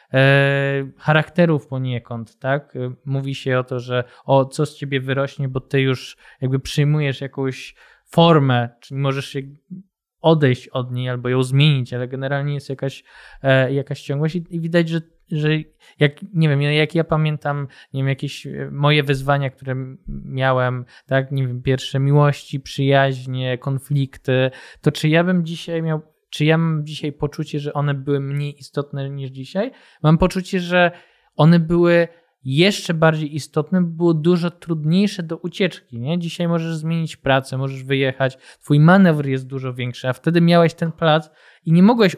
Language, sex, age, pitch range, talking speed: Polish, male, 20-39, 130-155 Hz, 160 wpm